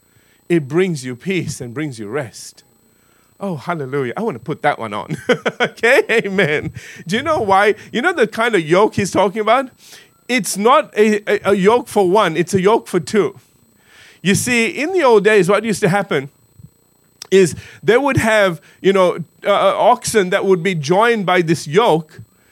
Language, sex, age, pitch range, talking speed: English, male, 30-49, 180-230 Hz, 185 wpm